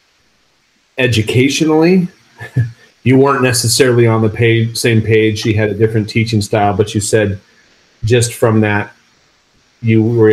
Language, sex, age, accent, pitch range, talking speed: English, male, 30-49, American, 110-125 Hz, 135 wpm